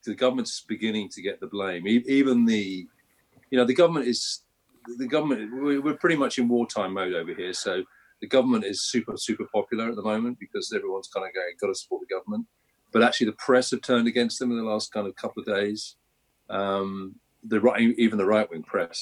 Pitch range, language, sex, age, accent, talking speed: 100-140 Hz, English, male, 40-59, British, 210 wpm